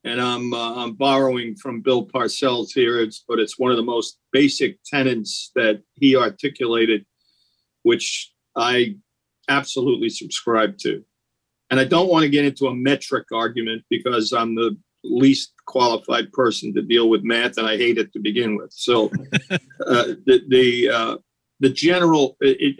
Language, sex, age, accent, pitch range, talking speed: English, male, 50-69, American, 120-150 Hz, 160 wpm